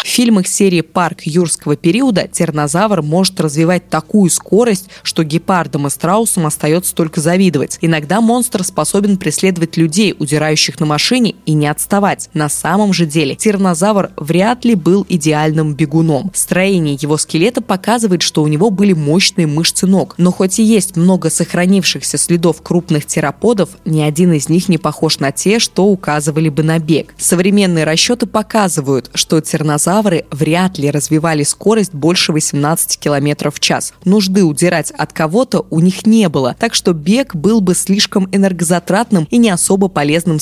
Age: 20-39